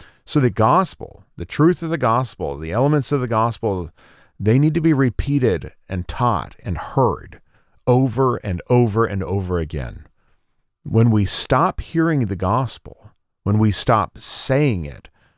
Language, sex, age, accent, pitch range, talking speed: English, male, 40-59, American, 95-125 Hz, 150 wpm